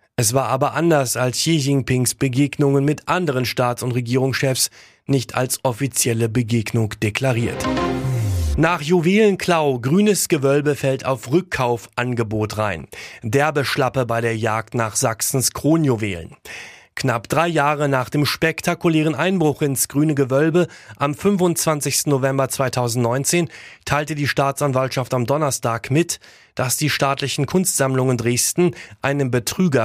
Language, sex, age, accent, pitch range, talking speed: German, male, 30-49, German, 115-145 Hz, 120 wpm